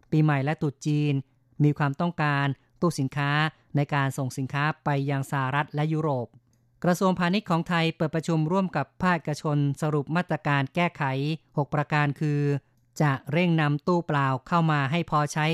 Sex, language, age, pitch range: female, Thai, 30-49, 140-165 Hz